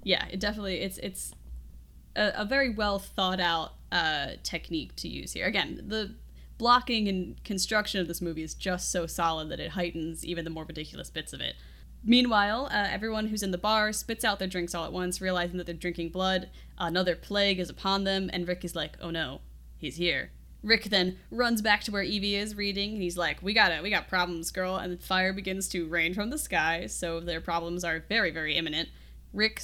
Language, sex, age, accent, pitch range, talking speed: English, female, 10-29, American, 170-215 Hz, 215 wpm